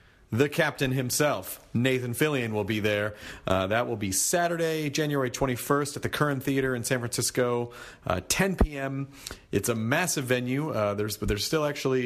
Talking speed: 170 wpm